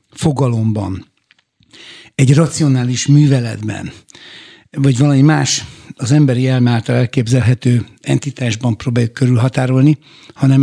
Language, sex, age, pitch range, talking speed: Hungarian, male, 60-79, 125-150 Hz, 85 wpm